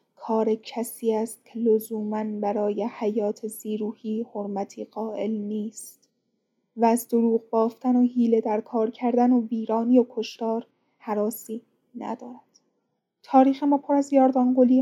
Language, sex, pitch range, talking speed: Persian, female, 220-245 Hz, 125 wpm